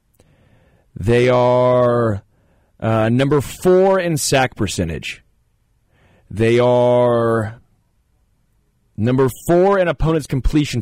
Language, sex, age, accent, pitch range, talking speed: English, male, 30-49, American, 105-130 Hz, 85 wpm